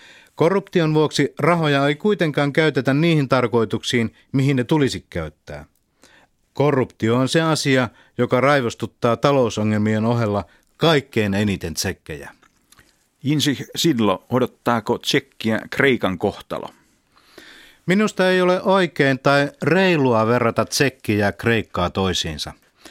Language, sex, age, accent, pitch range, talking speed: Finnish, male, 50-69, native, 105-145 Hz, 105 wpm